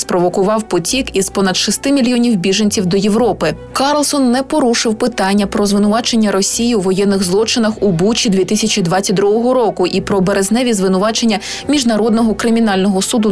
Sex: female